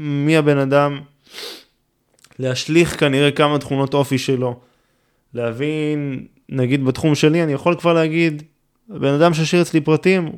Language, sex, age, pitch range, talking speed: Hebrew, male, 20-39, 120-150 Hz, 125 wpm